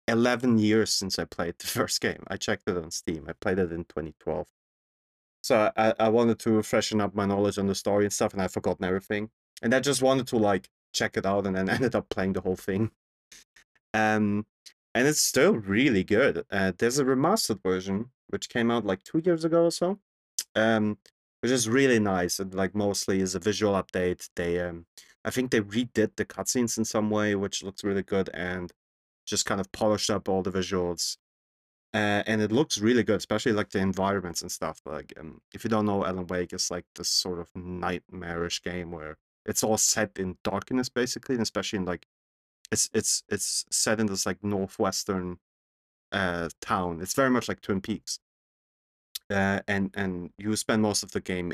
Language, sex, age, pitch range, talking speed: English, male, 30-49, 90-110 Hz, 200 wpm